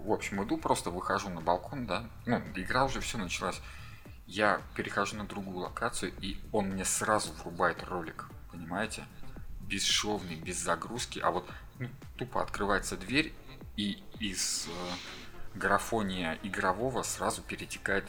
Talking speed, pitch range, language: 135 wpm, 85-100 Hz, Russian